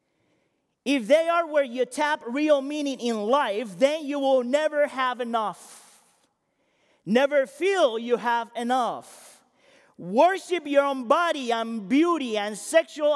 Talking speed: 130 wpm